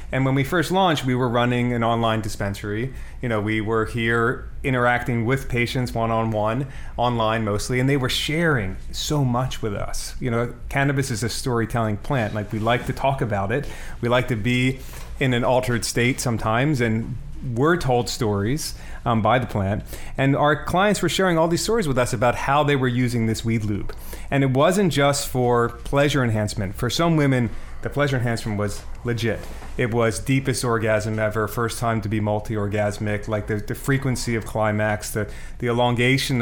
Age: 30-49